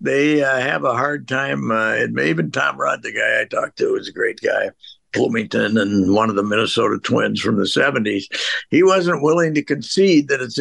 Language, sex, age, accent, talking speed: English, male, 60-79, American, 205 wpm